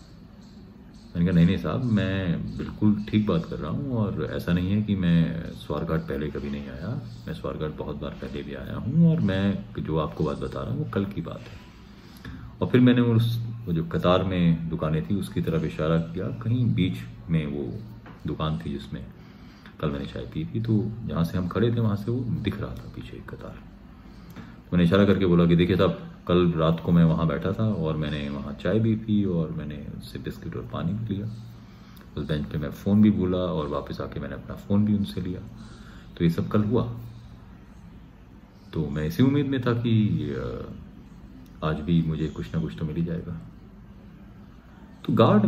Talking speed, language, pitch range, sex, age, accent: 200 wpm, Hindi, 80-115 Hz, male, 30-49, native